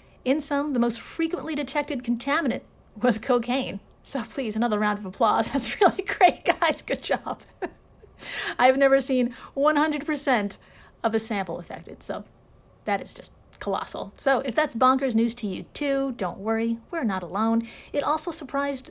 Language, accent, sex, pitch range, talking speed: English, American, female, 210-275 Hz, 160 wpm